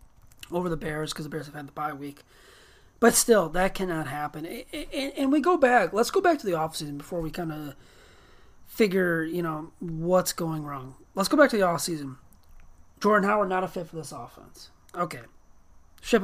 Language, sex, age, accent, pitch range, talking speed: English, male, 30-49, American, 145-185 Hz, 200 wpm